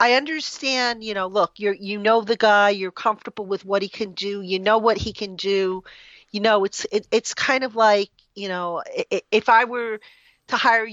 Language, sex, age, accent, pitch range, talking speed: English, female, 40-59, American, 195-235 Hz, 210 wpm